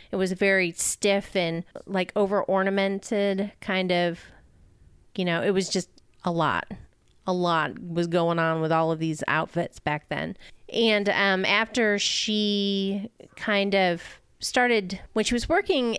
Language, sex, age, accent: English, female, 30-49, American